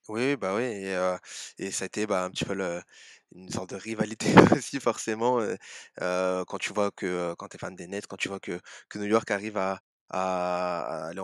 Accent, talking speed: French, 220 wpm